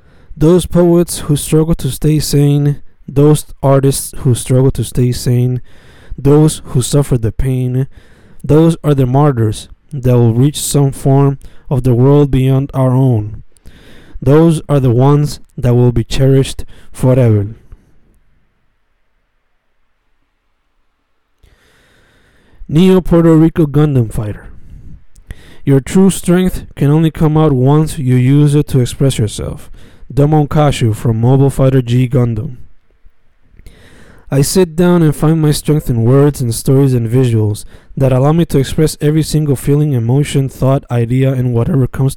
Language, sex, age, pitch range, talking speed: Spanish, male, 20-39, 125-150 Hz, 135 wpm